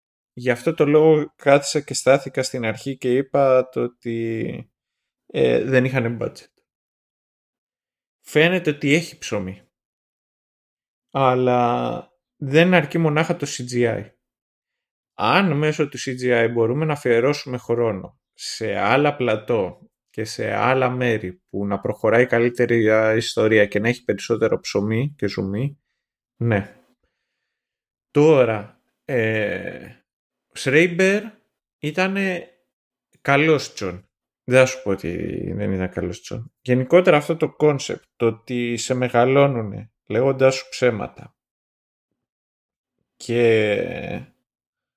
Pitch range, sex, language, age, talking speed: 115-145 Hz, male, Greek, 20-39, 110 wpm